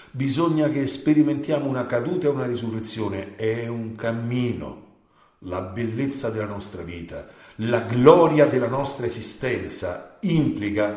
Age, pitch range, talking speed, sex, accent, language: 50-69, 110-140 Hz, 120 wpm, male, native, Italian